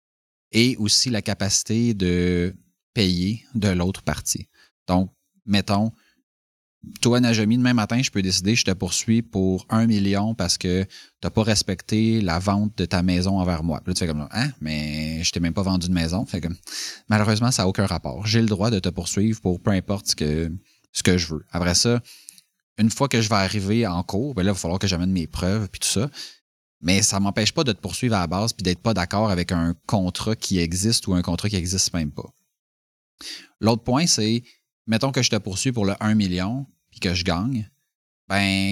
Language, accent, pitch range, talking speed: French, Canadian, 90-110 Hz, 220 wpm